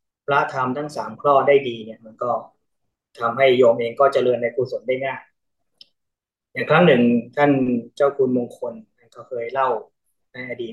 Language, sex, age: Thai, male, 20-39